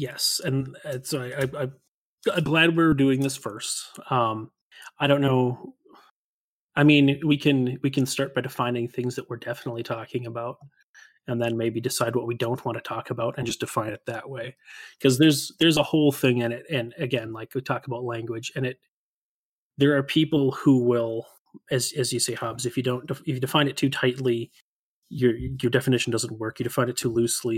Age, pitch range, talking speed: 30-49, 120-140 Hz, 200 wpm